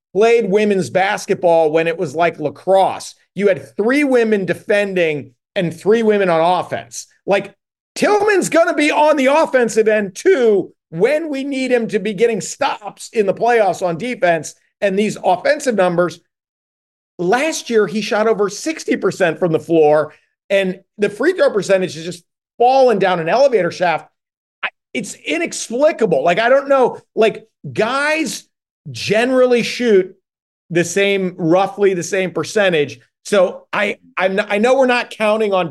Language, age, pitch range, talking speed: English, 50-69, 160-220 Hz, 155 wpm